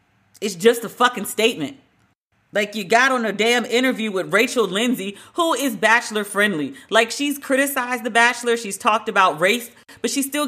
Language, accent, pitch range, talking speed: English, American, 155-235 Hz, 180 wpm